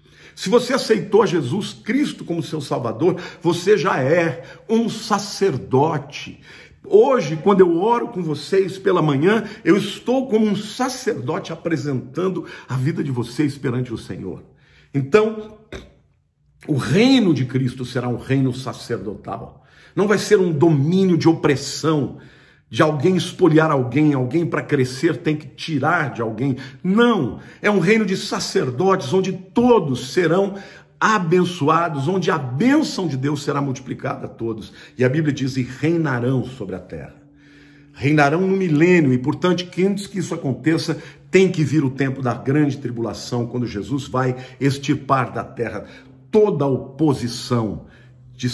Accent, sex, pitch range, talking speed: Brazilian, male, 130-185 Hz, 145 wpm